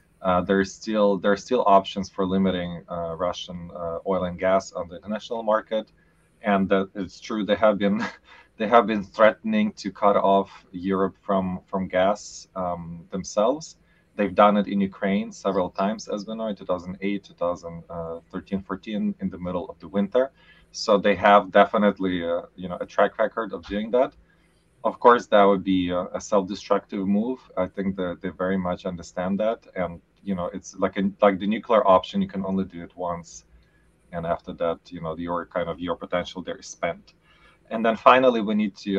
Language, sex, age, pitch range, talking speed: English, male, 20-39, 90-105 Hz, 190 wpm